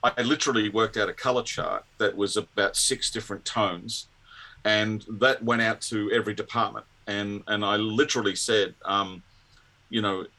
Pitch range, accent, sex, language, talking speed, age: 100-115 Hz, Australian, male, French, 160 wpm, 40-59